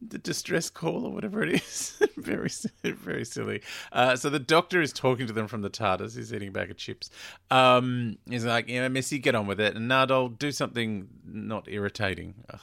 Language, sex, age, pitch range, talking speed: English, male, 40-59, 100-145 Hz, 215 wpm